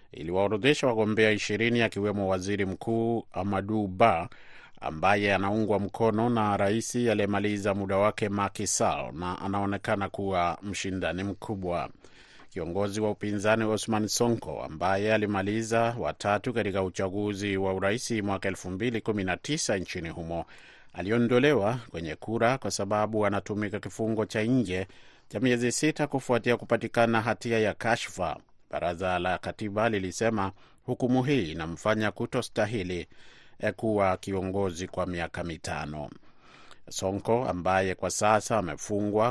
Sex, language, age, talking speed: male, Swahili, 30-49, 110 wpm